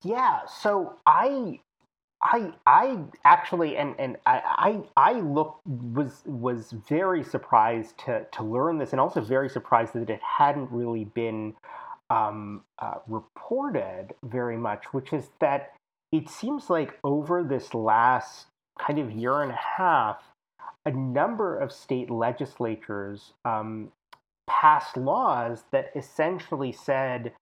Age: 30-49